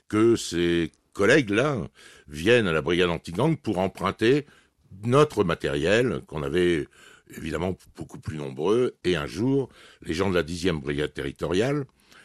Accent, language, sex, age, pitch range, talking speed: French, French, male, 60-79, 85-130 Hz, 135 wpm